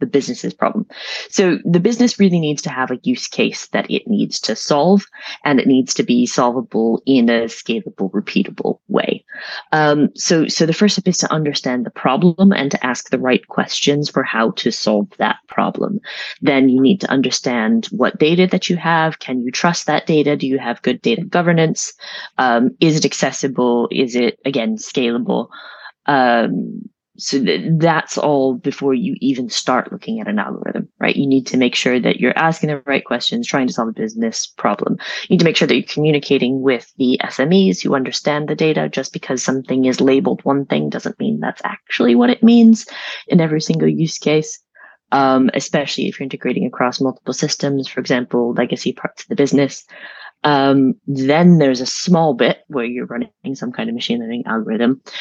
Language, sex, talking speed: English, female, 190 wpm